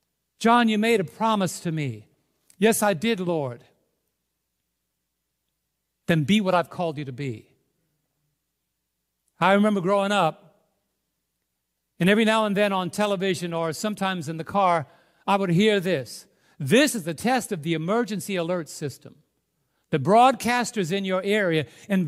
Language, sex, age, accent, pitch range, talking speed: English, male, 50-69, American, 155-205 Hz, 145 wpm